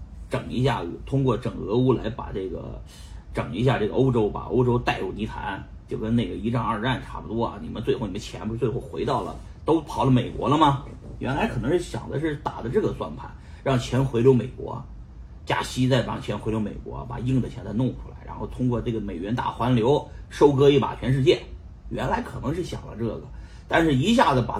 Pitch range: 85-130 Hz